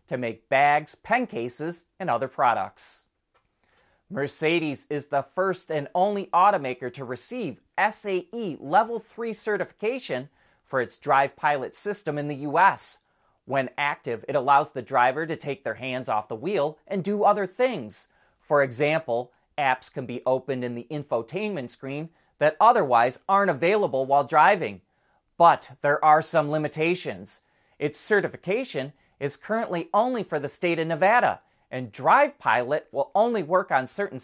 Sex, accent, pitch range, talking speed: male, American, 130-185 Hz, 150 wpm